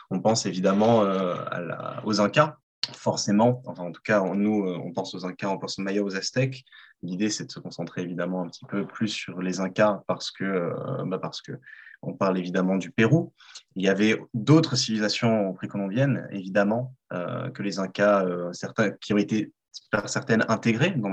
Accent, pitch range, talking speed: French, 95-125 Hz, 195 wpm